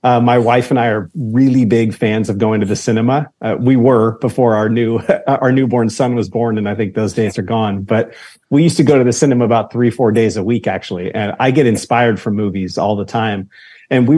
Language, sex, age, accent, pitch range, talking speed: English, male, 30-49, American, 115-135 Hz, 245 wpm